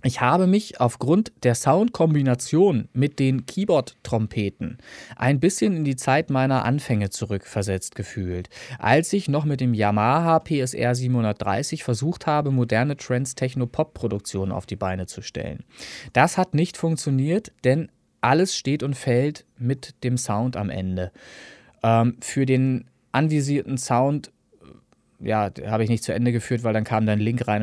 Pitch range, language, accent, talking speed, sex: 115-145 Hz, German, German, 155 wpm, male